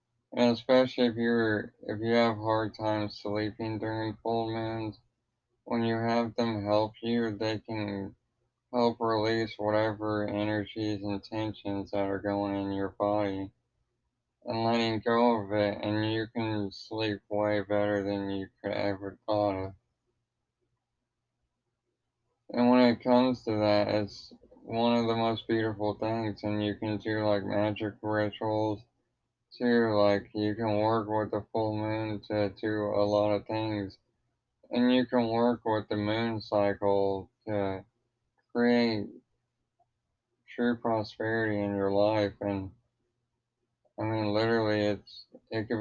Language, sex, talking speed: English, male, 140 wpm